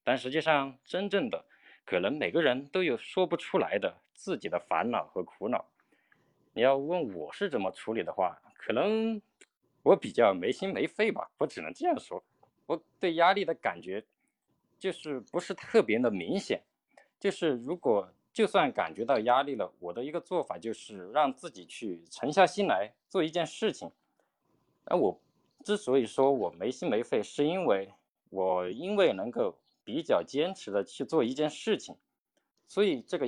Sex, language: male, Chinese